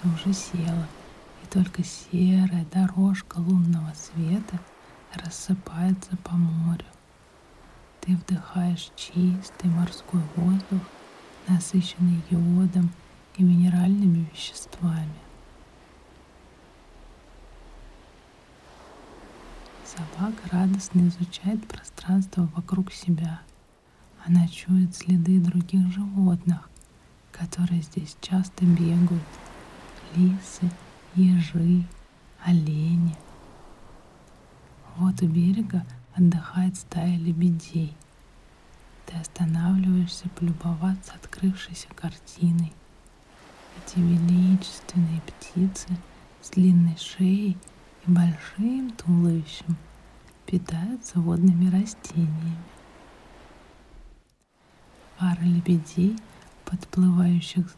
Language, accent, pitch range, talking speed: Russian, native, 170-185 Hz, 65 wpm